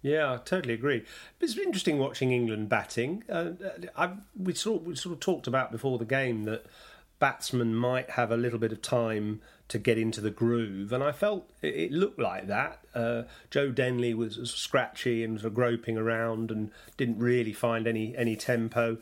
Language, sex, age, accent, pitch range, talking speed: English, male, 40-59, British, 115-135 Hz, 190 wpm